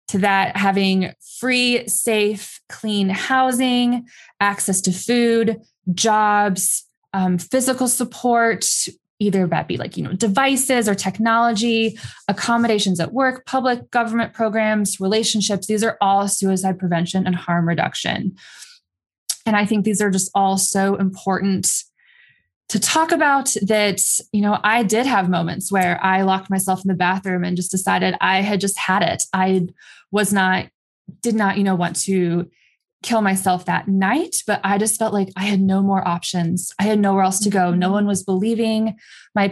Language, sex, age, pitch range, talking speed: English, female, 20-39, 185-225 Hz, 160 wpm